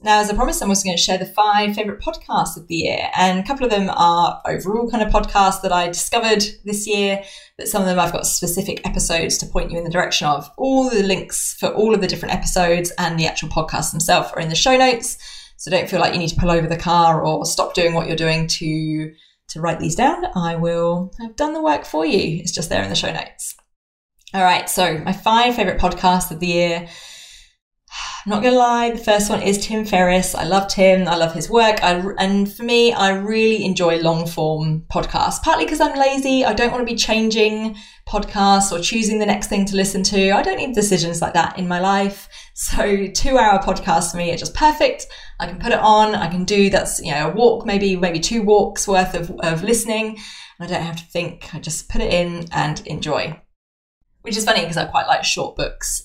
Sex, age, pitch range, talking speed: female, 20-39, 170-220 Hz, 235 wpm